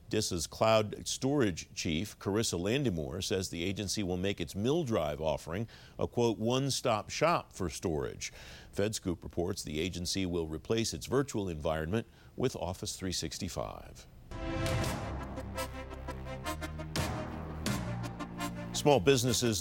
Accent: American